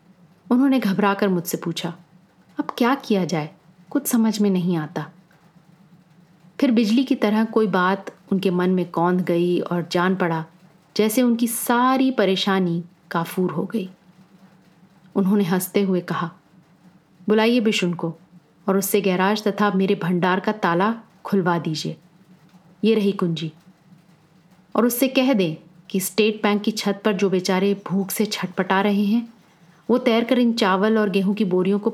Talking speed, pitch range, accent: 150 wpm, 175-210 Hz, native